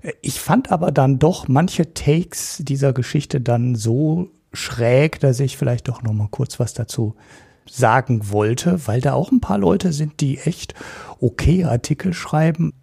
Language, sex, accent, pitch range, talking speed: German, male, German, 120-150 Hz, 165 wpm